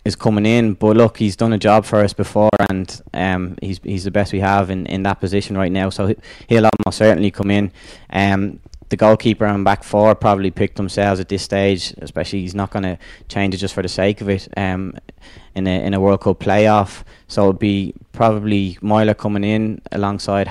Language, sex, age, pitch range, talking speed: English, male, 20-39, 95-110 Hz, 215 wpm